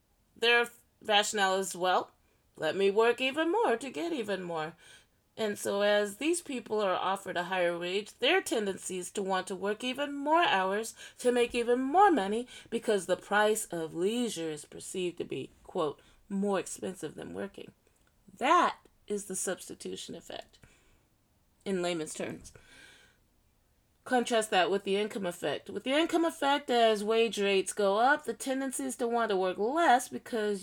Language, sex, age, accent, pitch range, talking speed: English, female, 30-49, American, 190-255 Hz, 165 wpm